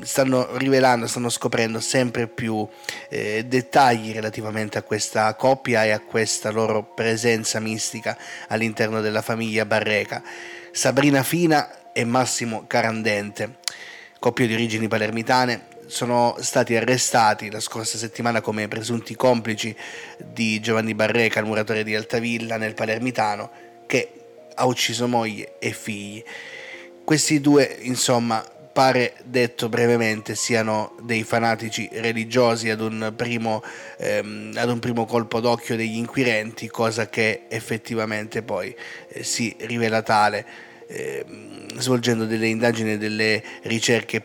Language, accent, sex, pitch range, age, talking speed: Italian, native, male, 110-120 Hz, 30-49, 120 wpm